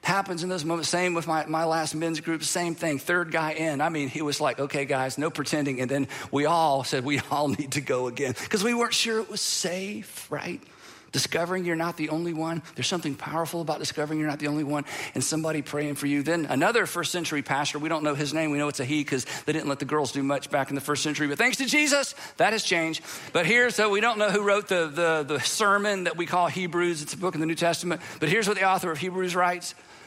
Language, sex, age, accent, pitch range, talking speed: English, male, 50-69, American, 155-240 Hz, 260 wpm